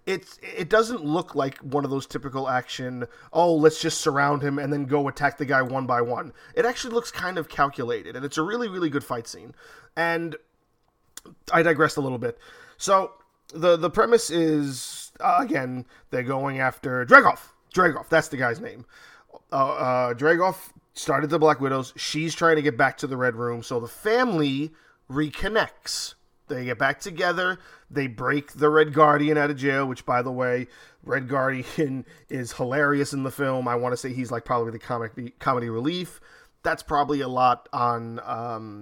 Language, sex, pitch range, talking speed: English, male, 125-155 Hz, 185 wpm